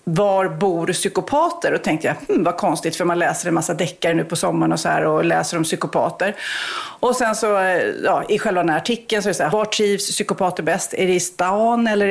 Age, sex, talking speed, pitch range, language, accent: 40-59, female, 240 wpm, 185-260 Hz, Swedish, native